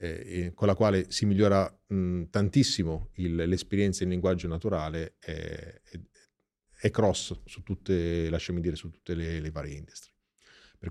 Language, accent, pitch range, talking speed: Italian, native, 85-105 Hz, 150 wpm